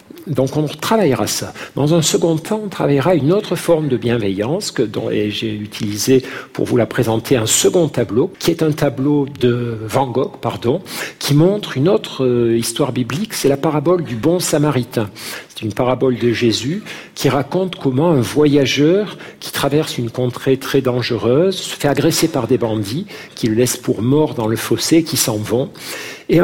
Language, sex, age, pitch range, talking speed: French, male, 50-69, 115-155 Hz, 185 wpm